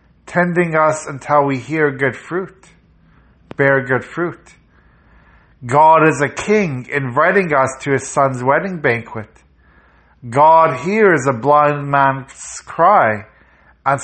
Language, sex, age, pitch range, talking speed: English, male, 50-69, 120-150 Hz, 120 wpm